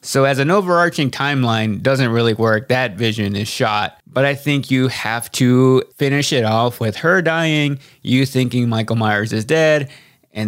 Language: English